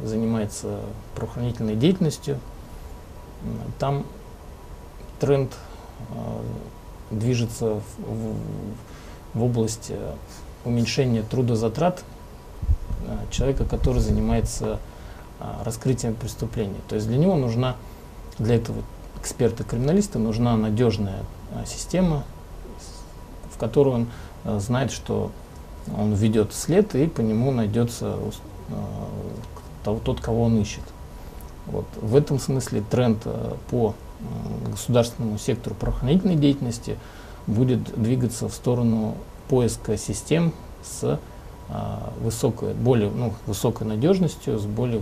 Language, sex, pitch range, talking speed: Russian, male, 105-120 Hz, 100 wpm